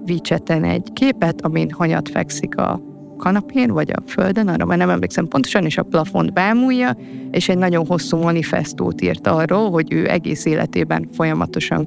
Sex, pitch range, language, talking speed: female, 155-180 Hz, Hungarian, 160 wpm